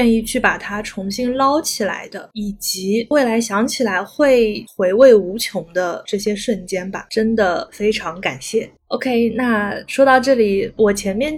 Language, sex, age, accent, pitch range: Chinese, female, 20-39, native, 200-235 Hz